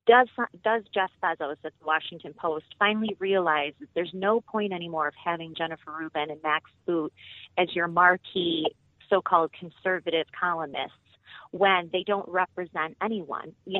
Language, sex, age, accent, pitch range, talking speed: English, female, 30-49, American, 165-205 Hz, 150 wpm